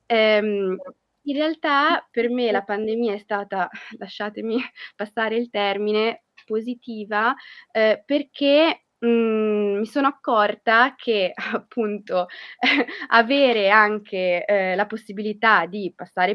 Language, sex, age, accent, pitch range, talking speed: Italian, female, 20-39, native, 195-230 Hz, 105 wpm